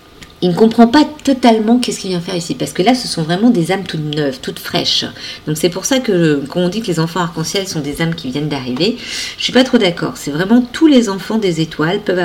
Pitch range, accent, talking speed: 160-215 Hz, French, 265 wpm